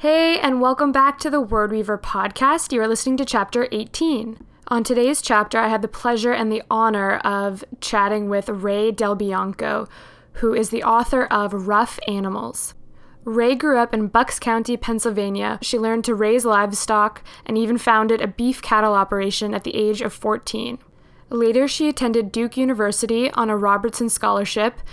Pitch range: 210-240 Hz